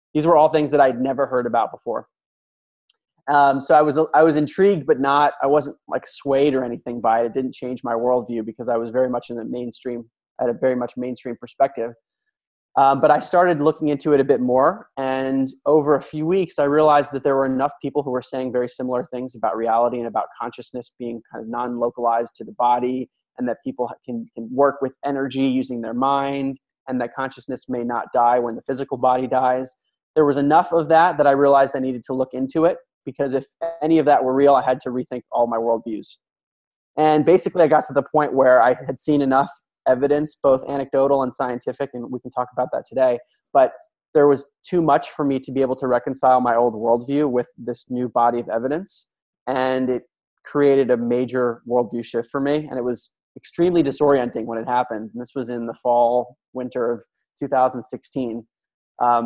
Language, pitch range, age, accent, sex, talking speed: English, 120-140 Hz, 20-39, American, male, 210 wpm